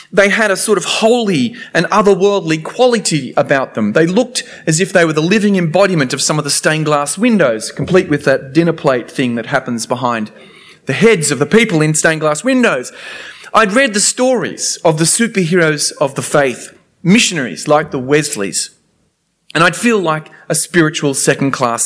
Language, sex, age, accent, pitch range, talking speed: English, male, 30-49, Australian, 135-185 Hz, 175 wpm